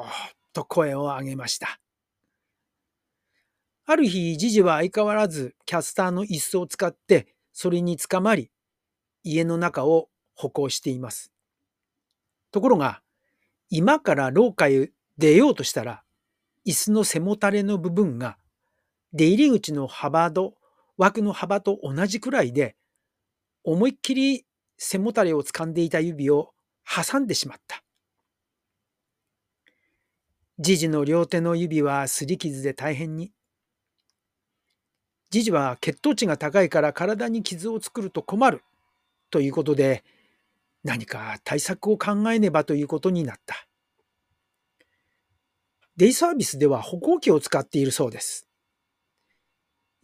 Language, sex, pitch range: Japanese, male, 145-205 Hz